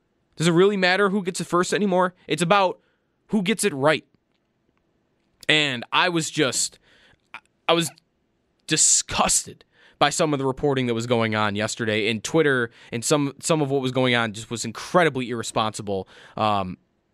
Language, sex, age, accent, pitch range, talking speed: English, male, 20-39, American, 125-155 Hz, 165 wpm